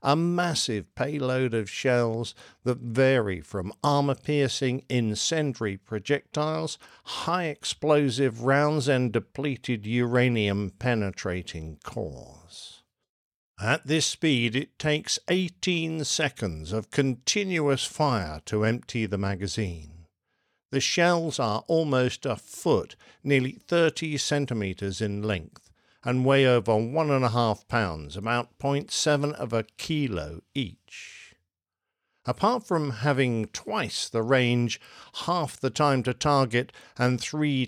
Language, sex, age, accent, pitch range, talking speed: English, male, 50-69, British, 105-145 Hz, 110 wpm